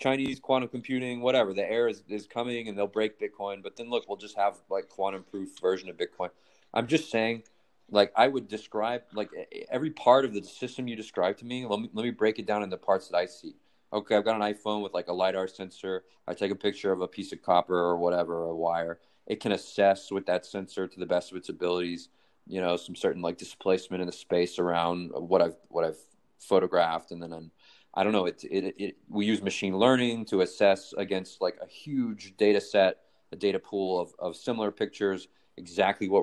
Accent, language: American, English